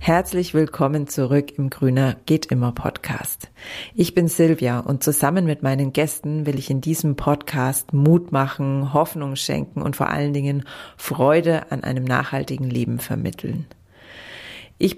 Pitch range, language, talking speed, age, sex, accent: 135-155 Hz, German, 130 wpm, 30-49, female, German